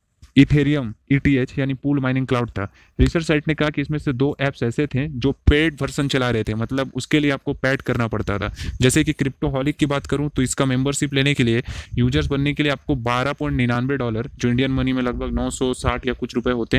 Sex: male